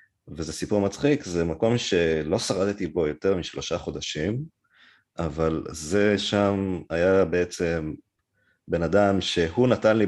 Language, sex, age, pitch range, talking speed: Hebrew, male, 30-49, 85-110 Hz, 125 wpm